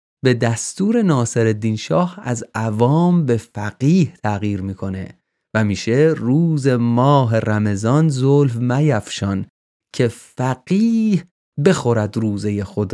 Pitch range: 100-135 Hz